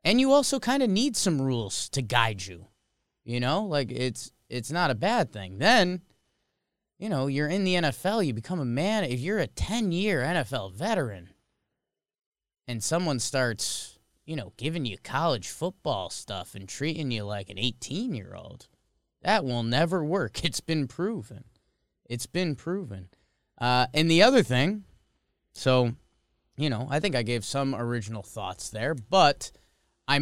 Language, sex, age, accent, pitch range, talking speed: English, male, 20-39, American, 115-165 Hz, 160 wpm